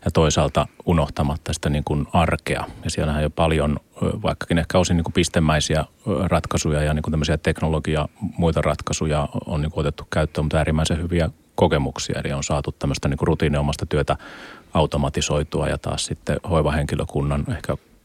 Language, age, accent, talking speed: Finnish, 30-49, native, 160 wpm